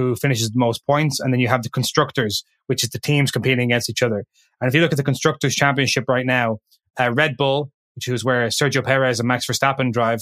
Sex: male